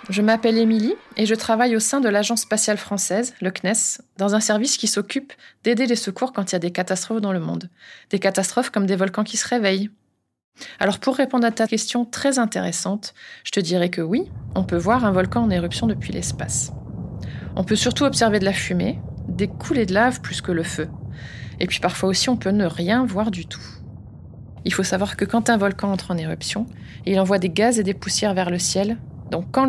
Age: 20-39